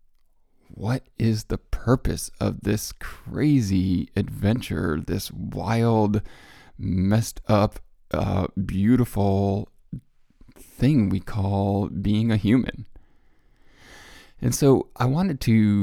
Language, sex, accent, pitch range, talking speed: English, male, American, 95-120 Hz, 95 wpm